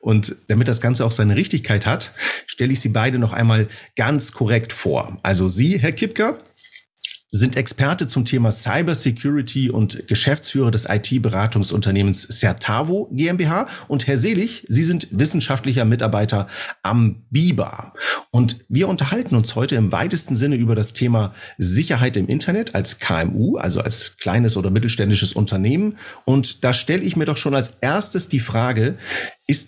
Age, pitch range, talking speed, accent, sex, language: 40-59, 110-135 Hz, 150 wpm, German, male, German